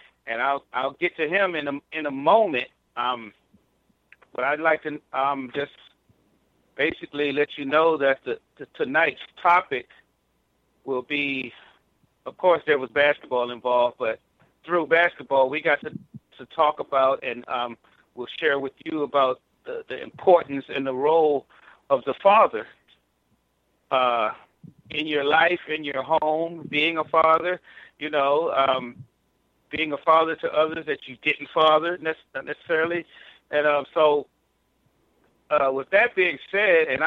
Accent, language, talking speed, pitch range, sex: American, English, 150 wpm, 135-160 Hz, male